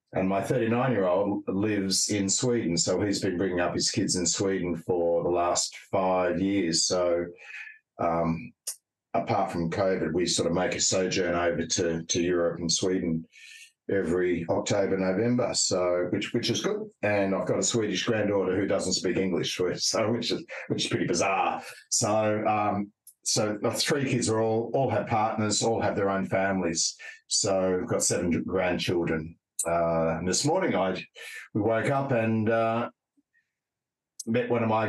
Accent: Australian